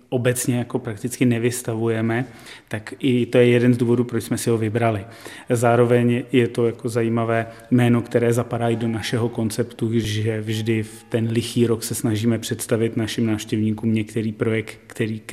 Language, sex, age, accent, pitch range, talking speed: Czech, male, 30-49, native, 115-125 Hz, 170 wpm